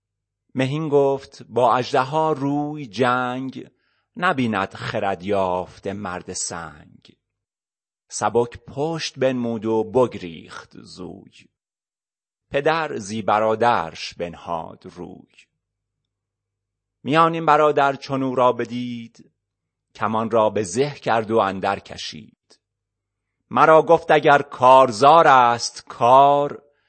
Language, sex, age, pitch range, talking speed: Persian, male, 30-49, 100-145 Hz, 90 wpm